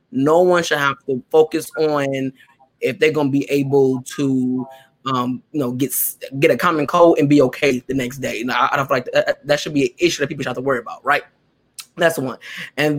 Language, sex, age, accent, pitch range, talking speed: English, male, 20-39, American, 135-170 Hz, 230 wpm